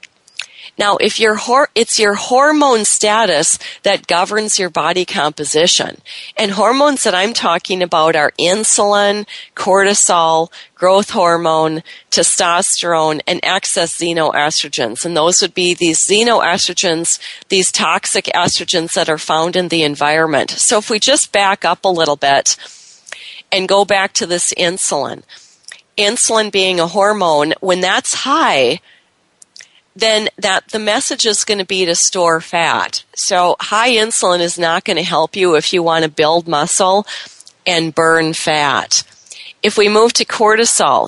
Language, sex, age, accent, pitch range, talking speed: English, female, 40-59, American, 170-215 Hz, 145 wpm